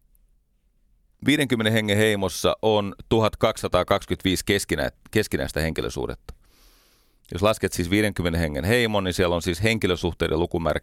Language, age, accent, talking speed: Finnish, 30-49, native, 110 wpm